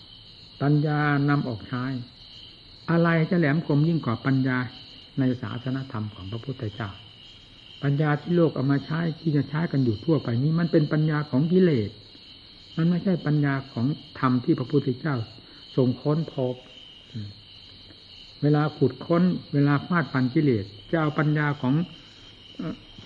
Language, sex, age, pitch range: Thai, male, 60-79, 110-155 Hz